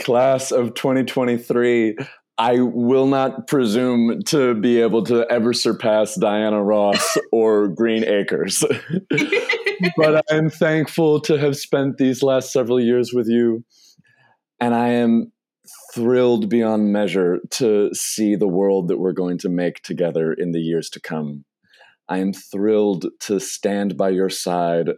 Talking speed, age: 140 wpm, 30-49